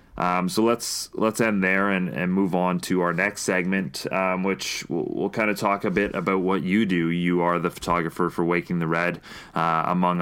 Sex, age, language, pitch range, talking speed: male, 20-39, English, 85-95 Hz, 210 wpm